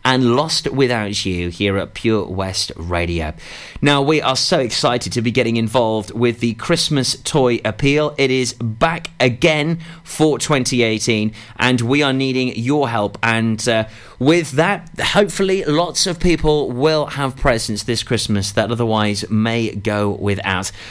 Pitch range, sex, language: 105-140 Hz, male, English